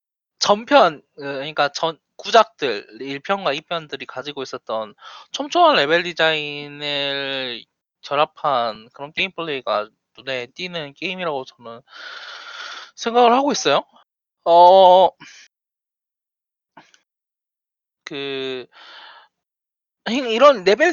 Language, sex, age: Korean, male, 20-39